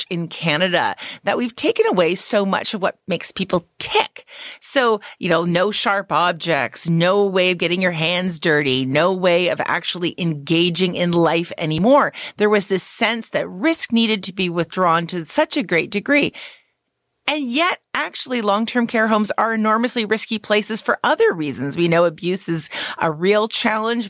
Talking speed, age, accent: 170 wpm, 40-59, American